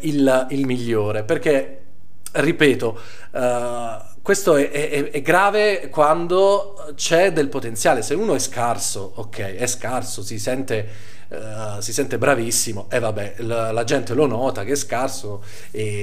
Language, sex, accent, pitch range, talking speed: Italian, male, native, 110-155 Hz, 135 wpm